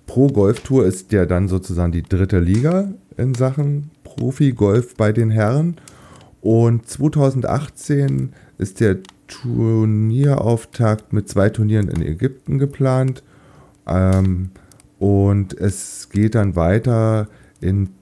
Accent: German